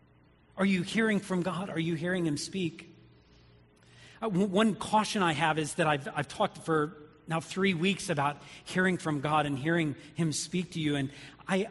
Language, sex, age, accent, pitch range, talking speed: English, male, 40-59, American, 130-160 Hz, 180 wpm